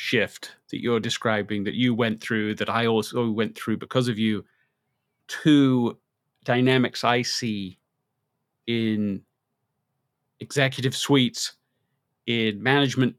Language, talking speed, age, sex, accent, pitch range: English, 115 wpm, 30-49, male, British, 120-145 Hz